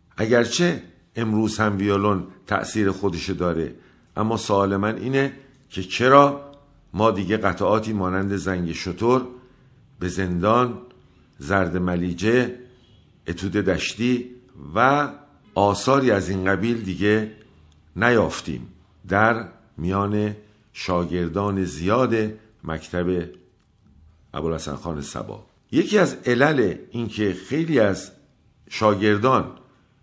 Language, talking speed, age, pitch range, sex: Persian, 95 wpm, 50-69, 95-130 Hz, male